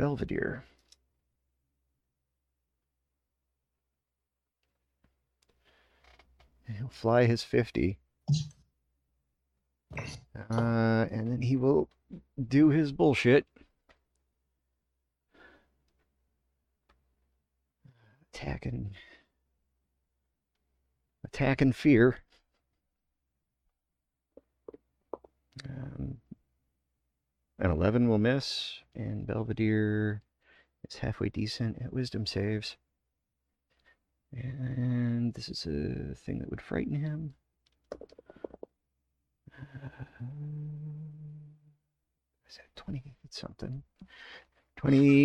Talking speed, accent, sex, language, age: 60 wpm, American, male, English, 40-59